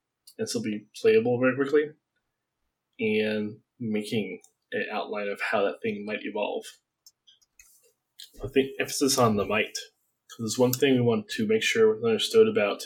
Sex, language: male, English